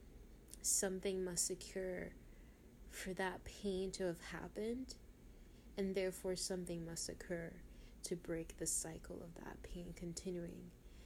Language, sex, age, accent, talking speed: English, female, 20-39, American, 120 wpm